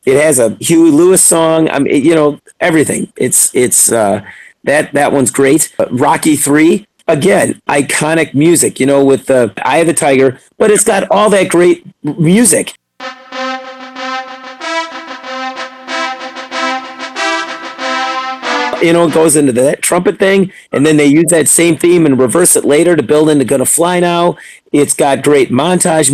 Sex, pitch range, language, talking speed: male, 145-220 Hz, English, 155 wpm